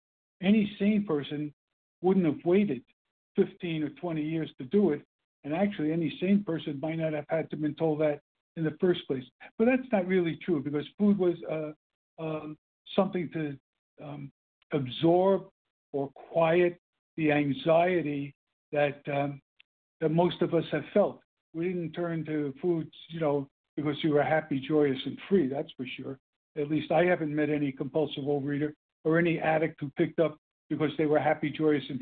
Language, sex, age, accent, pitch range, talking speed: English, male, 60-79, American, 145-170 Hz, 175 wpm